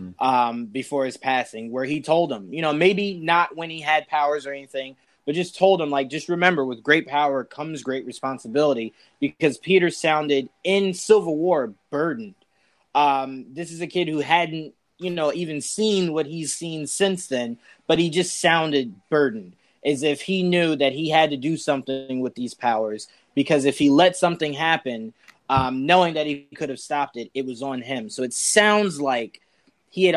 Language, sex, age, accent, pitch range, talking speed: English, male, 20-39, American, 135-170 Hz, 195 wpm